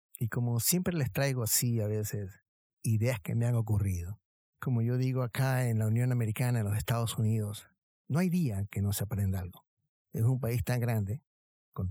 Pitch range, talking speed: 105-130 Hz, 195 wpm